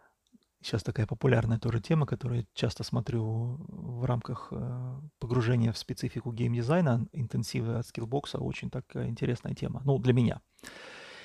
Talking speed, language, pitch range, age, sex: 135 wpm, Russian, 120-155 Hz, 30-49, male